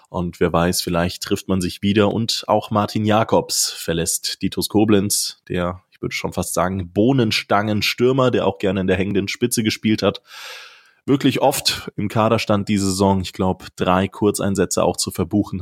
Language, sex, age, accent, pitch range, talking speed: German, male, 20-39, German, 95-110 Hz, 170 wpm